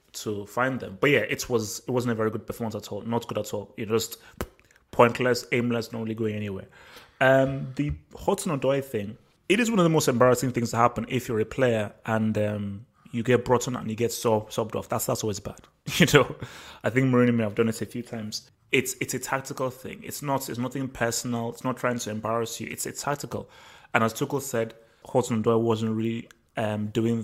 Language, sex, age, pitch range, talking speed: English, male, 20-39, 110-125 Hz, 220 wpm